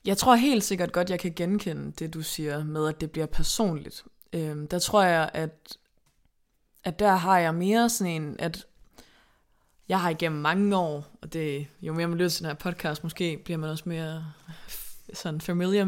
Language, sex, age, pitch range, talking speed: Danish, female, 20-39, 160-195 Hz, 195 wpm